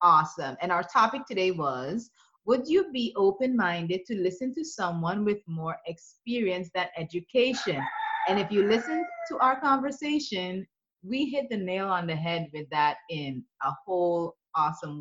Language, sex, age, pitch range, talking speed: English, female, 30-49, 185-265 Hz, 155 wpm